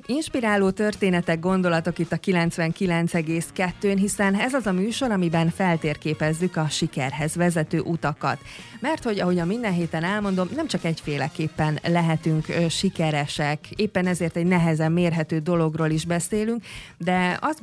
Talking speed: 135 wpm